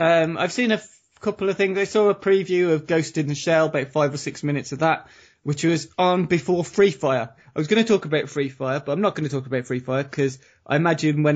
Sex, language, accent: male, English, British